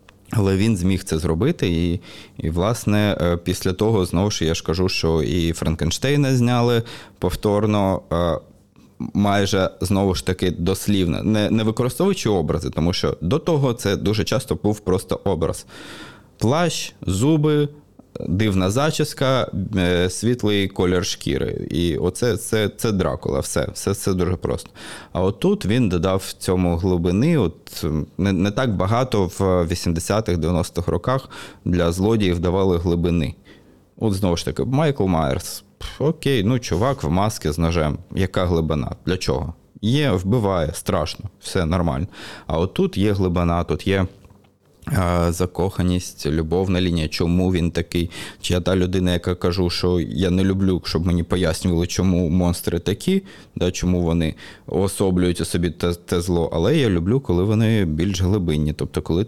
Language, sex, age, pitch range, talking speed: Ukrainian, male, 20-39, 85-105 Hz, 150 wpm